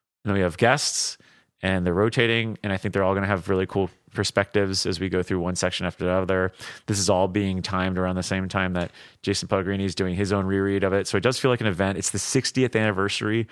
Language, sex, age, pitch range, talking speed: English, male, 30-49, 95-115 Hz, 260 wpm